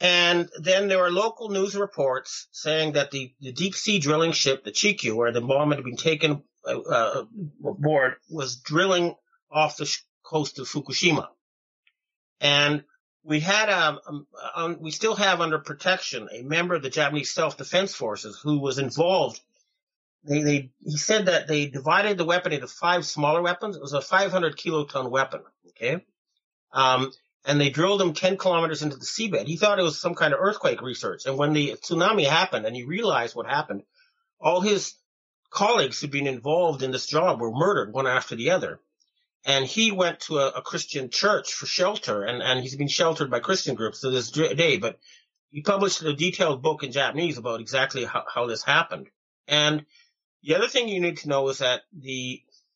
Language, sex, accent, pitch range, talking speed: English, male, American, 140-180 Hz, 185 wpm